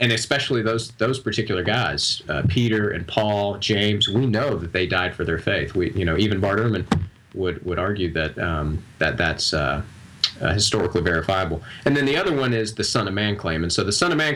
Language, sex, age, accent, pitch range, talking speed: English, male, 30-49, American, 100-120 Hz, 220 wpm